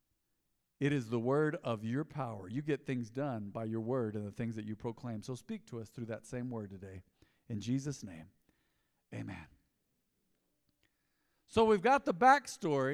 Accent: American